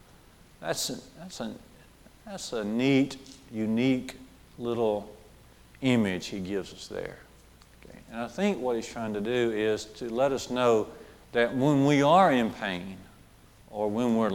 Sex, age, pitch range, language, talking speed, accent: male, 50-69, 110-135 Hz, English, 155 wpm, American